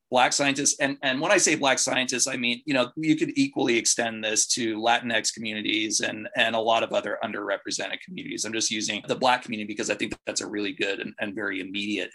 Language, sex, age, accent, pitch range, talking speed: English, male, 30-49, American, 115-155 Hz, 225 wpm